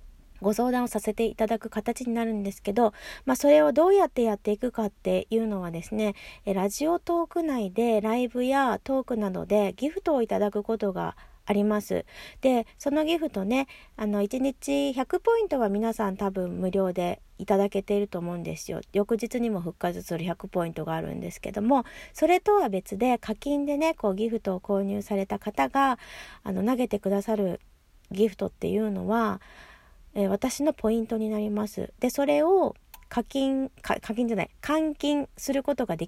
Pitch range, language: 200-260 Hz, Japanese